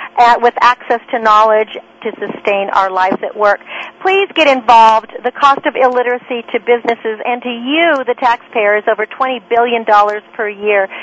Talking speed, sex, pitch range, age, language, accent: 165 wpm, female, 225-295 Hz, 50-69, English, American